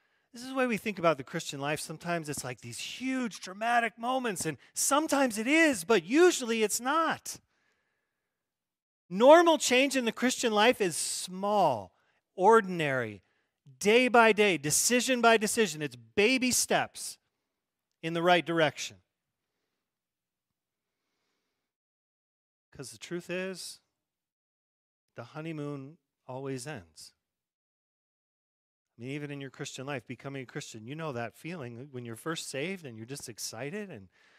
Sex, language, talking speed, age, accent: male, English, 135 wpm, 40-59, American